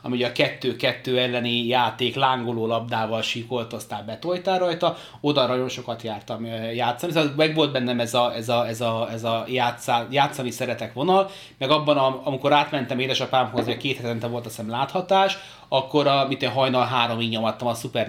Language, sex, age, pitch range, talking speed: Hungarian, male, 30-49, 115-140 Hz, 165 wpm